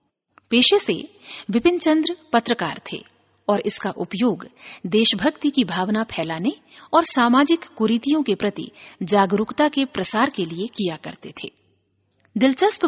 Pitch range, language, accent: 195-280 Hz, Hindi, native